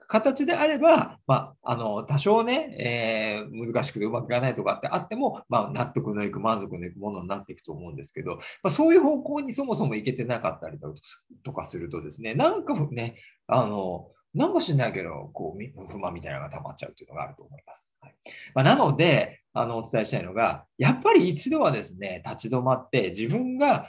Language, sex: Japanese, male